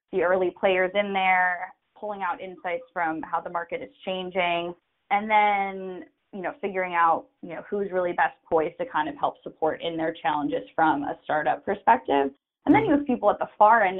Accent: American